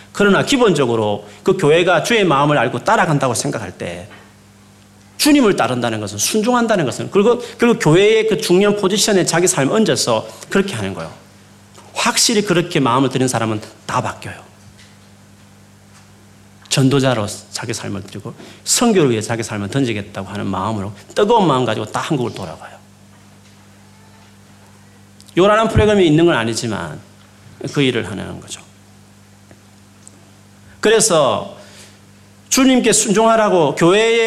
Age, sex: 40-59, male